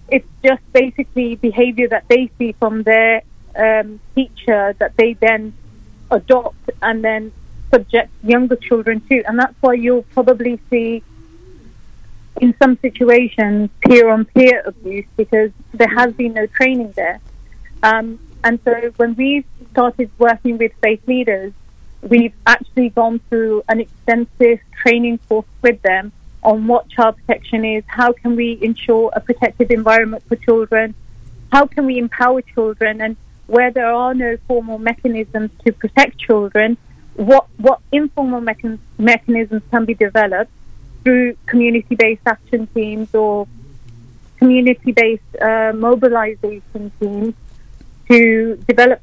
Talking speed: 130 wpm